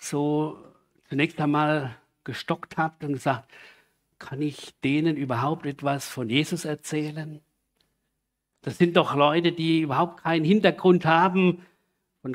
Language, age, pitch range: German, 50-69, 135-180 Hz